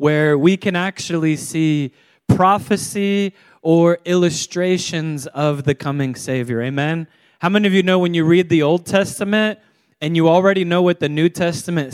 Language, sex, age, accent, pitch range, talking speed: English, male, 20-39, American, 150-190 Hz, 160 wpm